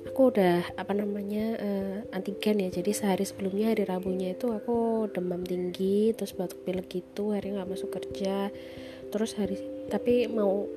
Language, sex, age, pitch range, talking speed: Indonesian, female, 20-39, 175-205 Hz, 155 wpm